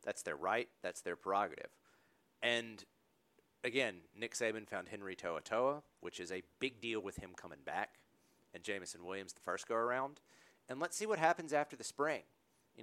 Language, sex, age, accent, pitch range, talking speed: English, male, 40-59, American, 110-135 Hz, 180 wpm